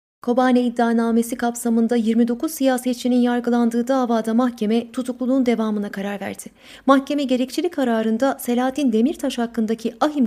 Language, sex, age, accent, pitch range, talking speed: Turkish, female, 30-49, native, 230-280 Hz, 110 wpm